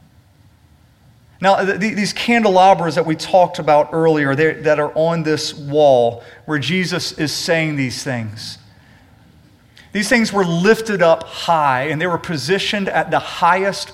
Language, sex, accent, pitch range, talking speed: English, male, American, 130-185 Hz, 140 wpm